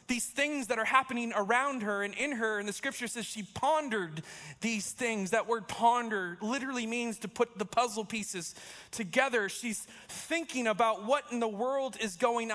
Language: English